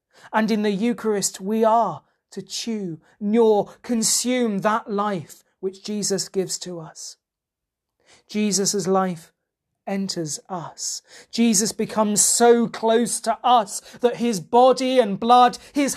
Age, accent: 40-59, British